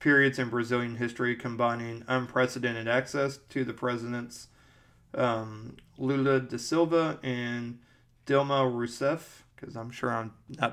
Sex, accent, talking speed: male, American, 125 wpm